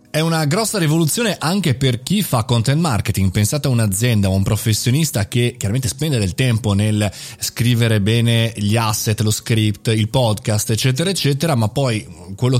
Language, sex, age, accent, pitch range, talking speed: Italian, male, 20-39, native, 110-140 Hz, 165 wpm